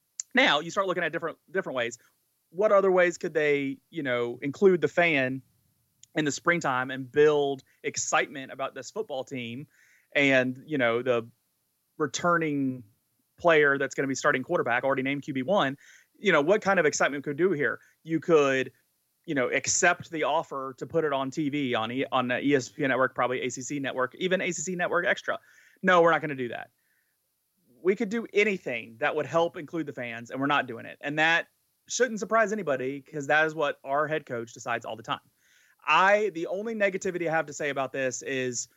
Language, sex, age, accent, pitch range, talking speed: English, male, 30-49, American, 130-160 Hz, 195 wpm